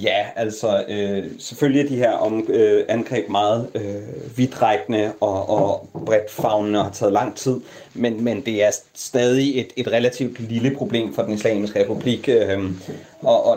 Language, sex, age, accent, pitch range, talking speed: Danish, male, 30-49, native, 110-135 Hz, 155 wpm